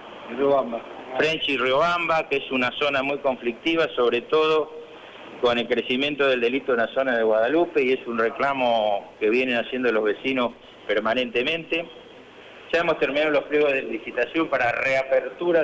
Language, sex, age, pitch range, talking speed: Spanish, male, 50-69, 120-160 Hz, 165 wpm